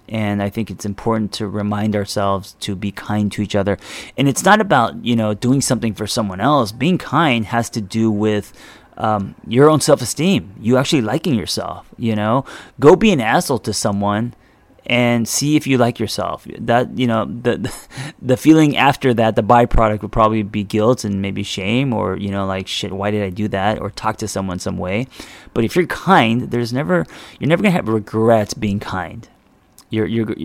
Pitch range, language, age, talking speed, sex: 105-120 Hz, English, 30-49, 200 wpm, male